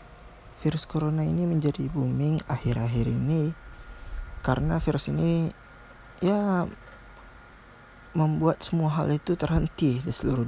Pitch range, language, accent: 120-150 Hz, Indonesian, native